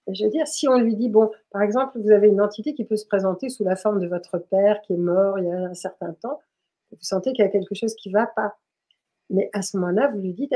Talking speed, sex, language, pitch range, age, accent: 290 wpm, female, French, 195-250 Hz, 50-69, French